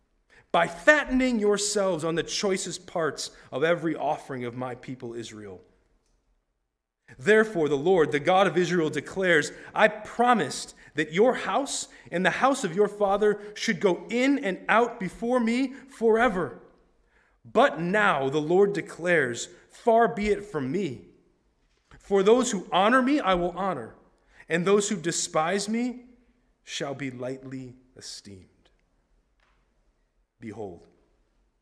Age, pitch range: 30-49, 135-215 Hz